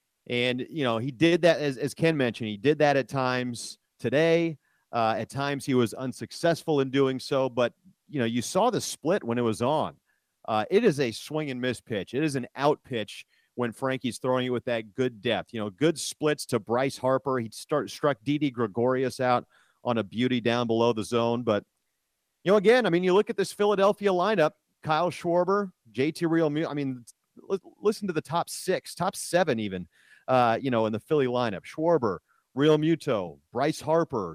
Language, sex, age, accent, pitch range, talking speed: English, male, 40-59, American, 120-160 Hz, 205 wpm